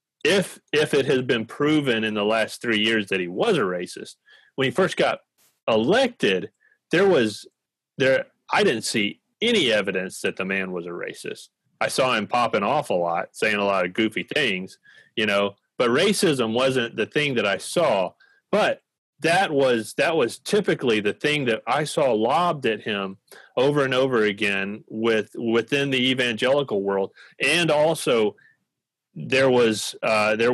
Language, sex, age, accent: English, male, 30-49, American